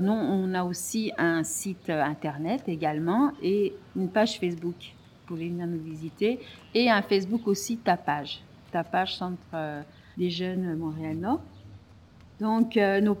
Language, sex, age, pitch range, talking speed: French, female, 50-69, 165-210 Hz, 130 wpm